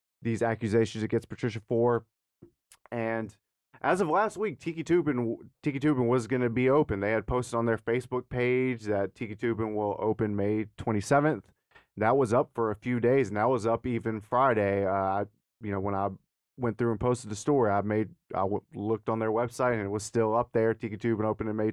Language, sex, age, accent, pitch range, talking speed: English, male, 30-49, American, 105-125 Hz, 215 wpm